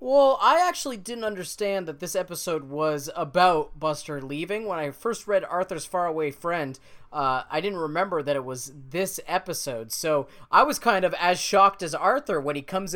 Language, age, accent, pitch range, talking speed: English, 20-39, American, 145-185 Hz, 185 wpm